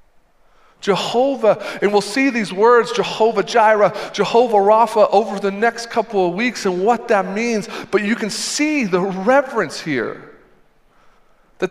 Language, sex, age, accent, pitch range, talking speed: English, male, 40-59, American, 165-215 Hz, 145 wpm